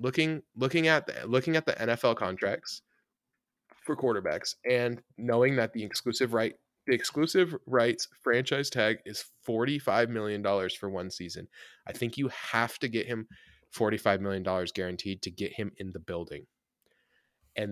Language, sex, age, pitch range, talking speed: English, male, 20-39, 95-115 Hz, 165 wpm